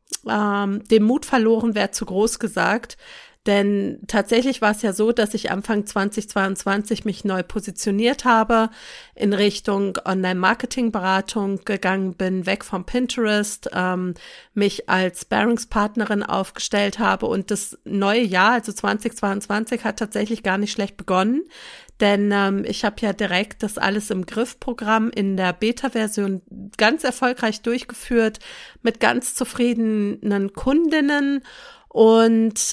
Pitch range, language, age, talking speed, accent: 200-240 Hz, German, 40-59, 130 wpm, German